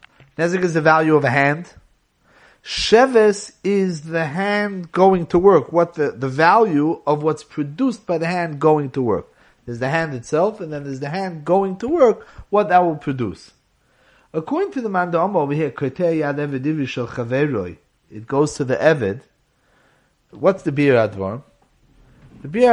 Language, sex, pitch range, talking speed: English, male, 140-175 Hz, 165 wpm